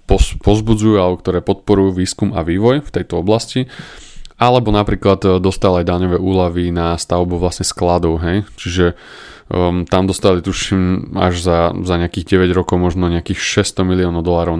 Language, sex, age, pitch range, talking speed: Slovak, male, 20-39, 85-95 Hz, 150 wpm